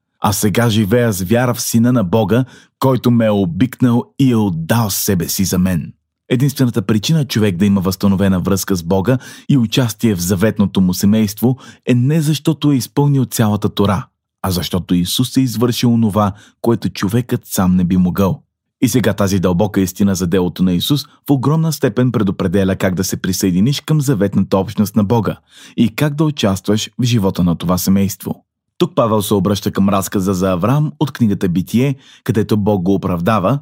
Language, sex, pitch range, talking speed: Bulgarian, male, 100-130 Hz, 180 wpm